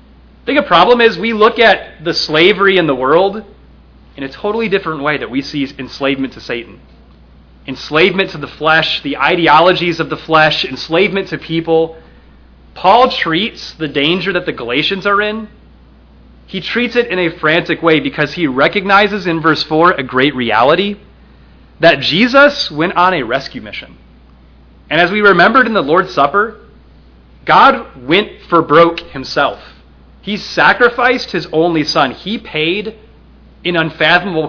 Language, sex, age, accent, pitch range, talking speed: English, male, 30-49, American, 130-195 Hz, 155 wpm